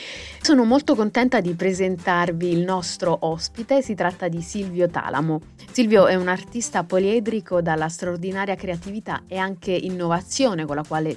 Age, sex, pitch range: 30-49, female, 170-195 Hz